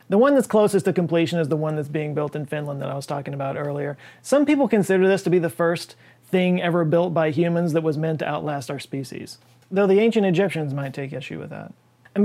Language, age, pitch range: English, 30-49, 145-175 Hz